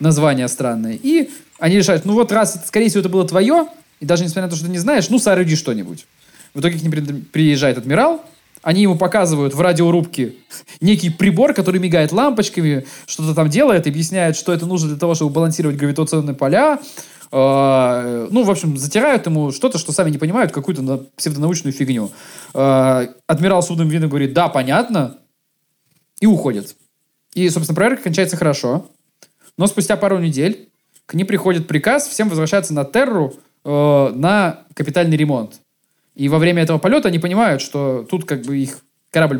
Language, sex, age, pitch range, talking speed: Russian, male, 20-39, 145-190 Hz, 170 wpm